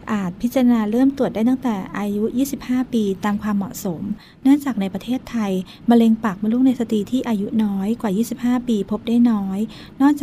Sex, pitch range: female, 205-240 Hz